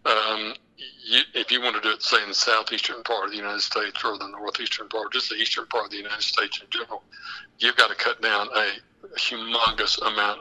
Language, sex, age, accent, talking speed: English, male, 60-79, American, 230 wpm